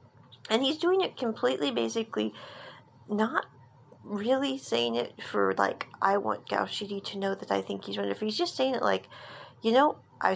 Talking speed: 180 wpm